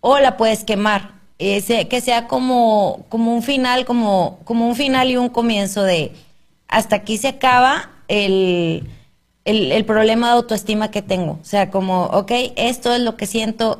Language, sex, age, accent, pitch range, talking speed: Spanish, female, 30-49, Mexican, 200-235 Hz, 170 wpm